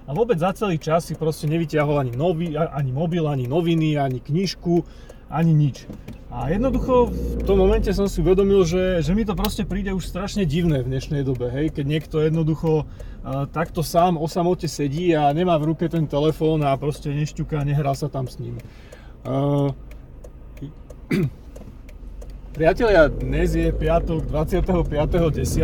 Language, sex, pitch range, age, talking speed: Slovak, male, 135-165 Hz, 30-49, 160 wpm